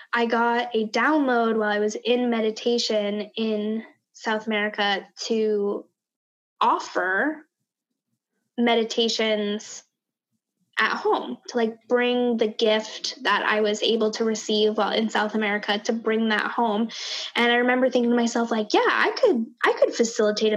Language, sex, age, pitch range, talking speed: English, female, 10-29, 215-240 Hz, 145 wpm